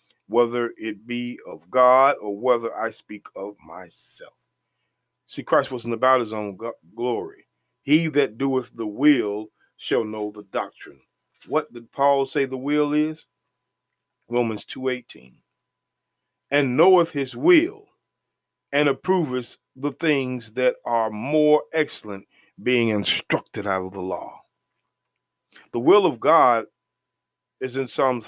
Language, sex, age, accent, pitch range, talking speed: English, male, 40-59, American, 115-140 Hz, 130 wpm